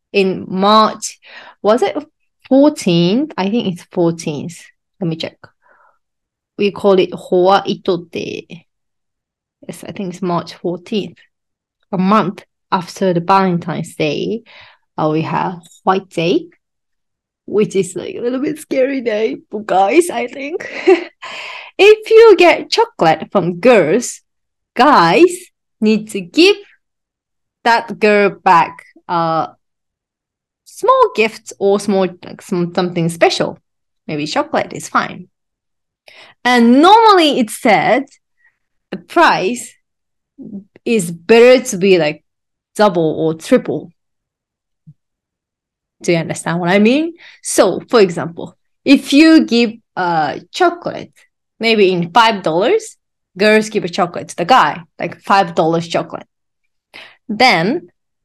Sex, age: female, 30-49